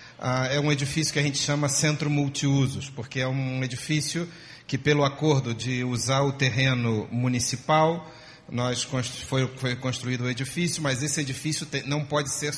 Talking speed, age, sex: 170 wpm, 40-59, male